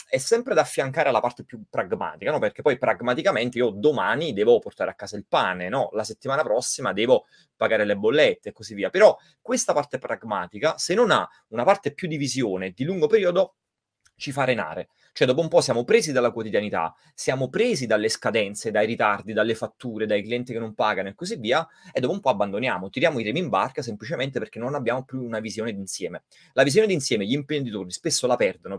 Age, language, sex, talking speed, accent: 30-49, Italian, male, 205 wpm, native